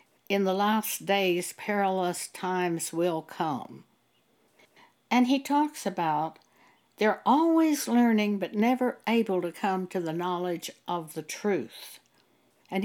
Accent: American